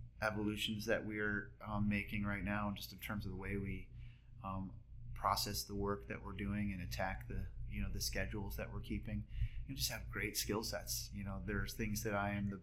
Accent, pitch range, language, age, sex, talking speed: American, 95-115 Hz, English, 30-49, male, 220 wpm